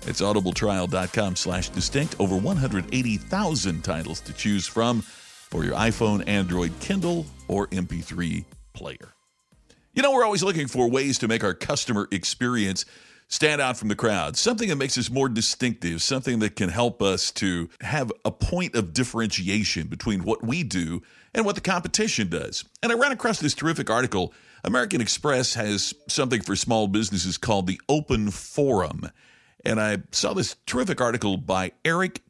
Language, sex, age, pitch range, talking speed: English, male, 50-69, 95-135 Hz, 160 wpm